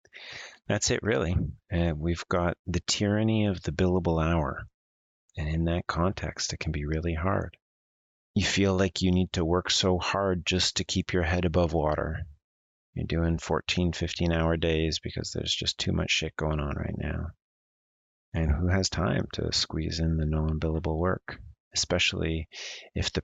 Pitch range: 75-95 Hz